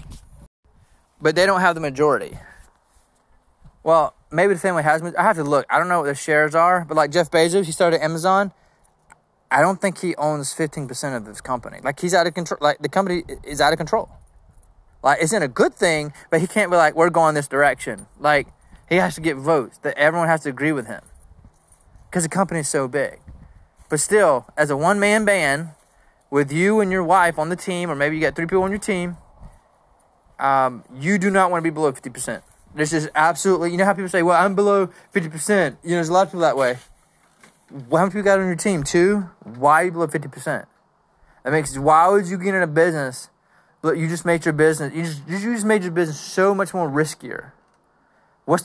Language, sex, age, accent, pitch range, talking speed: English, male, 20-39, American, 150-185 Hz, 220 wpm